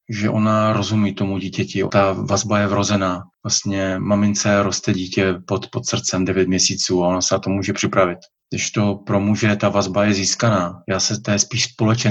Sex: male